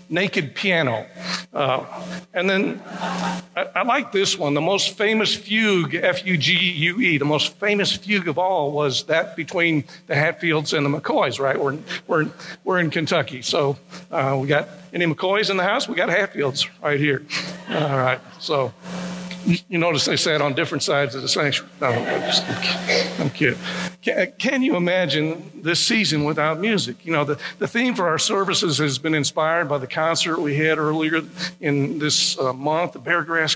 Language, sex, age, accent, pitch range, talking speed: English, male, 60-79, American, 155-180 Hz, 180 wpm